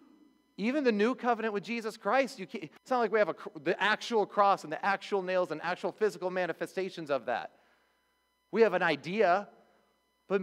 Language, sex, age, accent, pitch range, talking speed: English, male, 30-49, American, 145-205 Hz, 190 wpm